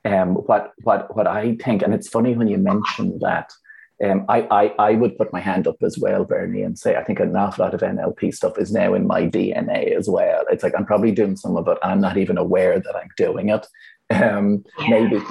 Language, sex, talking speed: English, male, 240 wpm